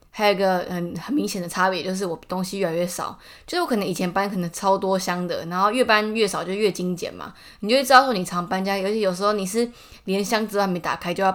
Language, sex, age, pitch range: Chinese, female, 20-39, 180-220 Hz